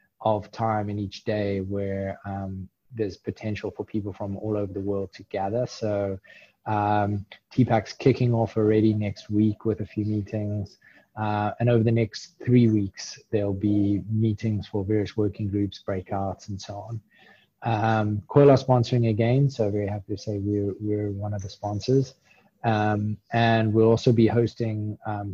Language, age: English, 20-39